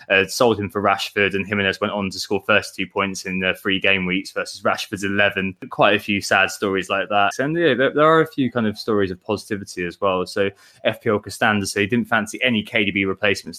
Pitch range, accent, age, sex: 95-110 Hz, British, 20-39, male